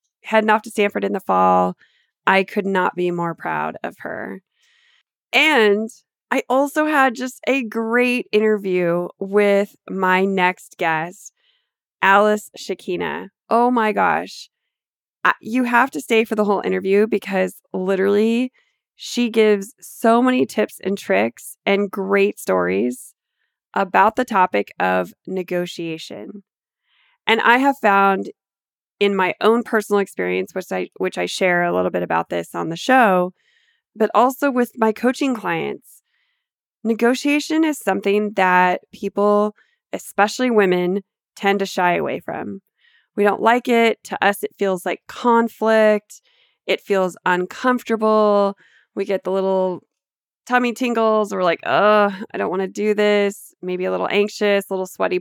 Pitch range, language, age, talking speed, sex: 185-235 Hz, English, 20-39, 145 wpm, female